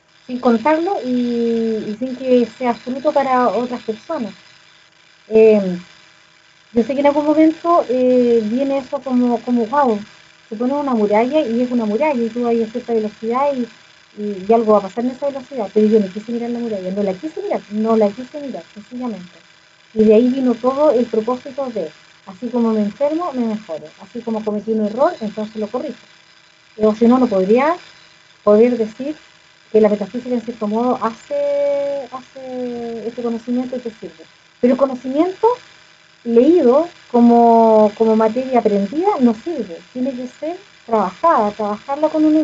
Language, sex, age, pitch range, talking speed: Spanish, female, 30-49, 215-270 Hz, 170 wpm